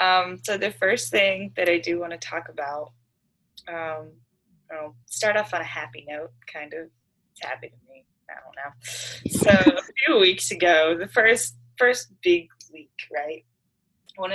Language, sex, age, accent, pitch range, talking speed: English, female, 20-39, American, 140-180 Hz, 170 wpm